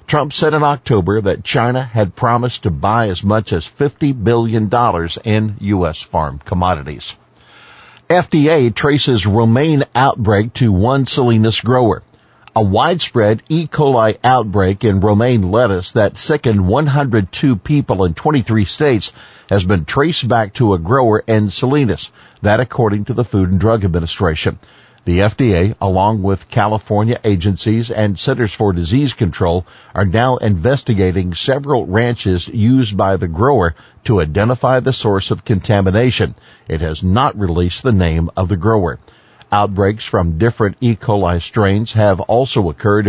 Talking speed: 145 wpm